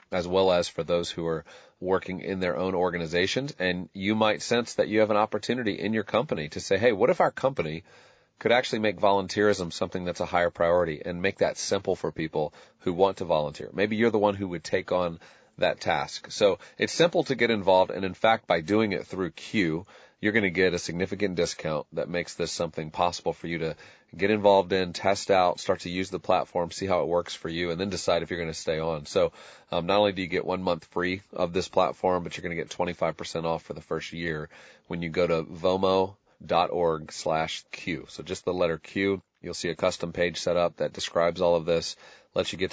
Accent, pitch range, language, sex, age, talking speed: American, 85-100 Hz, English, male, 30-49, 230 wpm